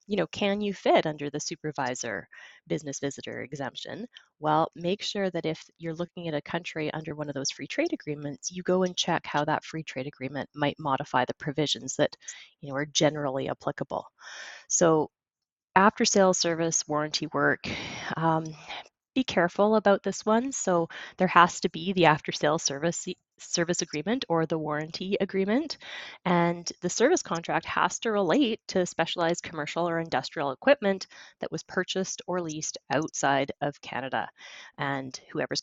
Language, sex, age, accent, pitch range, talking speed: English, female, 20-39, American, 145-185 Hz, 165 wpm